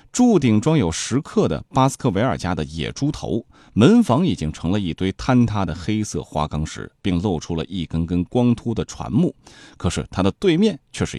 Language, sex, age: Chinese, male, 30-49